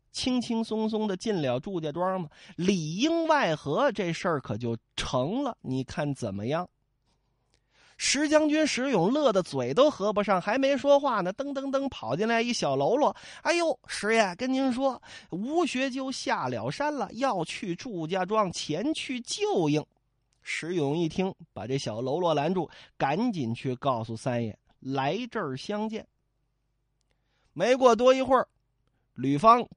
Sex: male